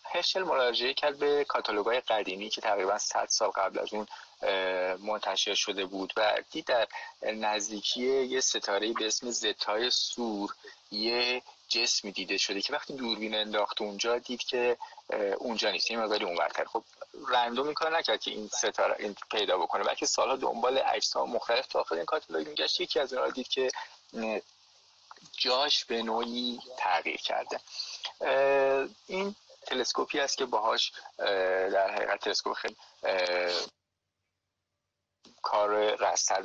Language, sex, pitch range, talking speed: Persian, male, 105-145 Hz, 130 wpm